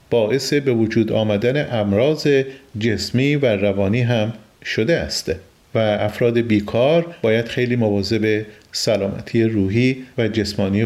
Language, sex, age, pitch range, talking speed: Persian, male, 40-59, 110-150 Hz, 115 wpm